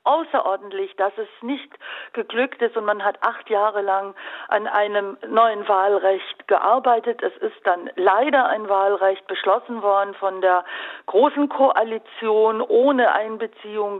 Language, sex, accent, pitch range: German, female, German, 195-235 Hz